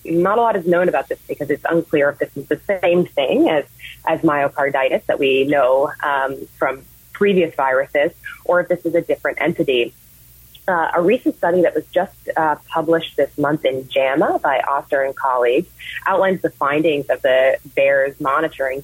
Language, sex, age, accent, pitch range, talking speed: English, female, 30-49, American, 140-180 Hz, 180 wpm